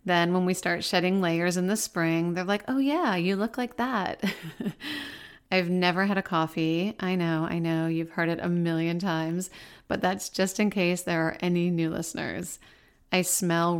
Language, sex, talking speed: English, female, 190 wpm